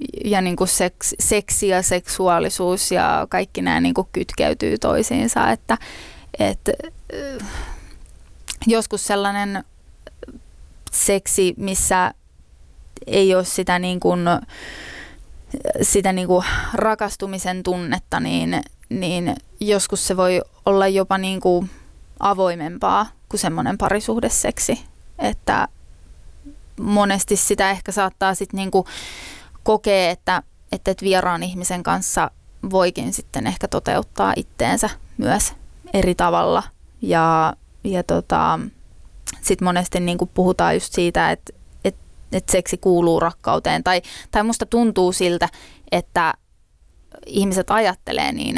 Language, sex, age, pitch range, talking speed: Finnish, female, 20-39, 180-200 Hz, 110 wpm